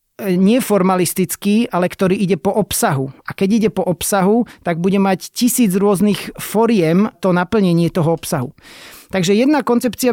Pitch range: 175-210 Hz